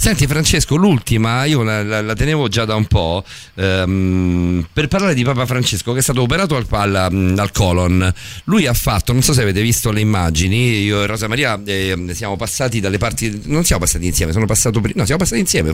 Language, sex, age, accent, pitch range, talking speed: Italian, male, 50-69, native, 95-125 Hz, 200 wpm